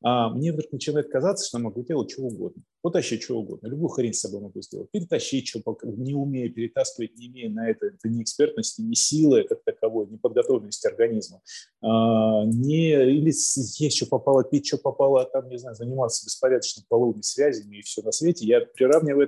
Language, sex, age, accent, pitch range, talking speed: Russian, male, 30-49, native, 115-155 Hz, 195 wpm